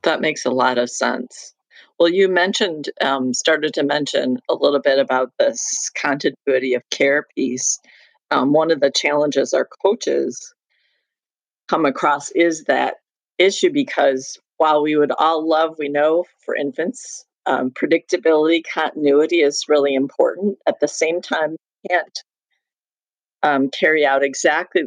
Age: 50-69